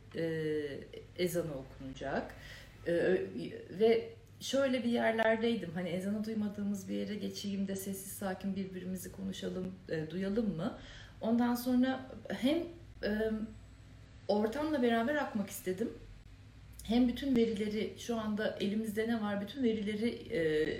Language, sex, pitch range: Turkish, female, 170-245 Hz